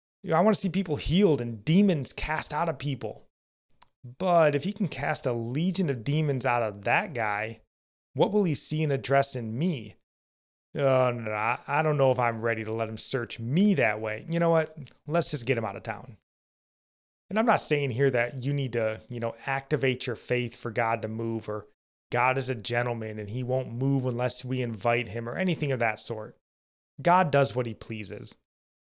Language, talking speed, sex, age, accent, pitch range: English, 205 wpm, male, 30-49, American, 115-145 Hz